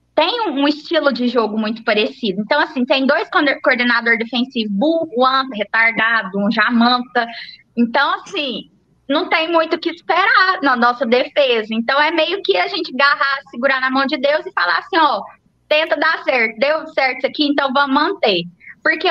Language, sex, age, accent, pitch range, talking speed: Portuguese, female, 20-39, Brazilian, 240-315 Hz, 175 wpm